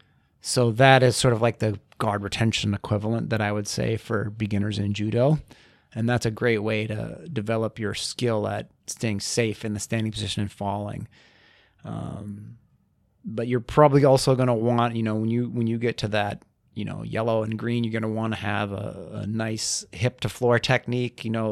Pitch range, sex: 105-120 Hz, male